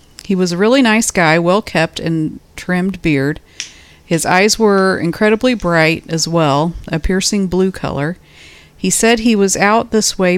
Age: 40-59